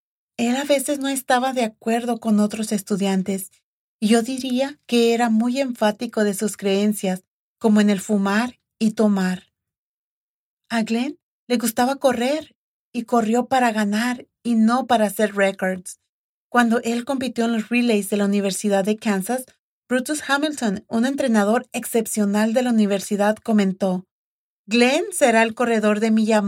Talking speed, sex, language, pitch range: 150 wpm, female, English, 210-255 Hz